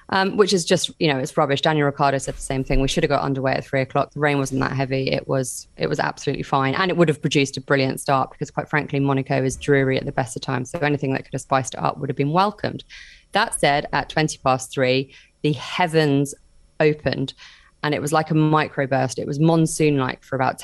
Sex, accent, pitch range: female, British, 135-170 Hz